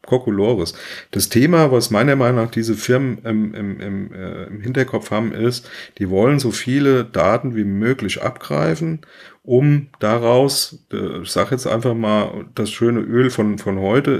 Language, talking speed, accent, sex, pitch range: German, 155 wpm, German, male, 105-130 Hz